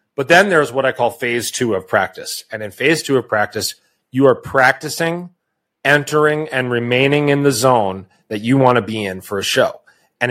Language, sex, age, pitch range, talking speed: English, male, 30-49, 115-150 Hz, 205 wpm